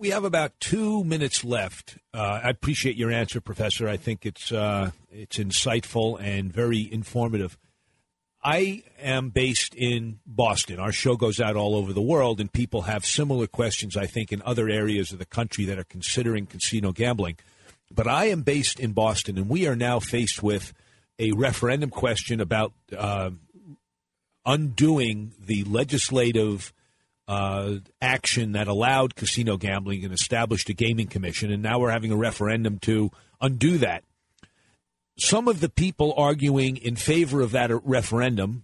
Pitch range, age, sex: 105-135 Hz, 50-69, male